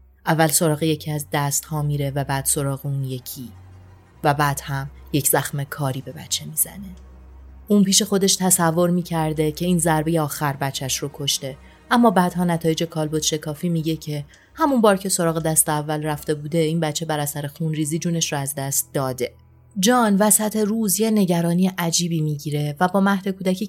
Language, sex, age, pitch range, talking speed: Persian, female, 30-49, 145-180 Hz, 175 wpm